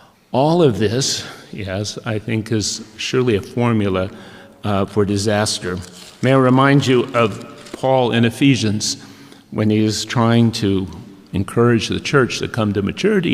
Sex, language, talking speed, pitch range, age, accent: male, English, 150 wpm, 105-140 Hz, 50-69, American